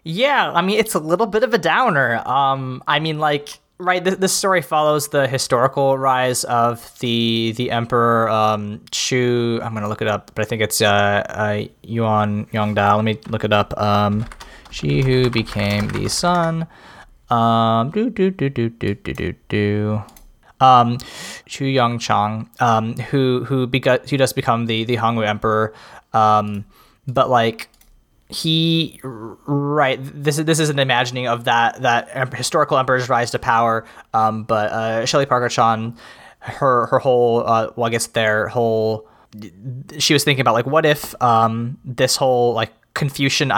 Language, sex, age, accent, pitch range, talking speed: English, male, 20-39, American, 110-135 Hz, 165 wpm